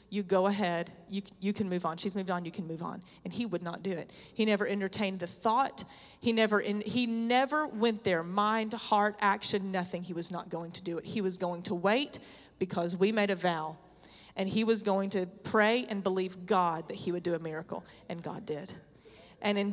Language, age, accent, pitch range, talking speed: English, 30-49, American, 185-225 Hz, 225 wpm